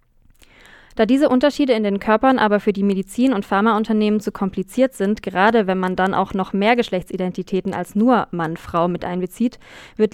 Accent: German